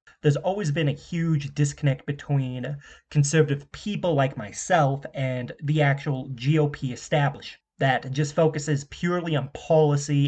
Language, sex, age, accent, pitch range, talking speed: English, male, 30-49, American, 135-155 Hz, 130 wpm